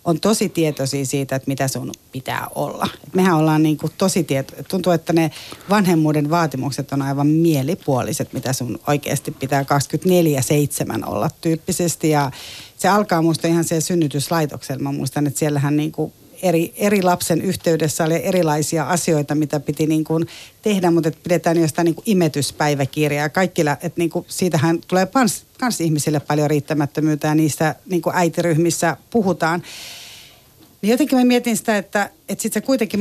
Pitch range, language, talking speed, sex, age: 145-175 Hz, Finnish, 150 wpm, female, 30-49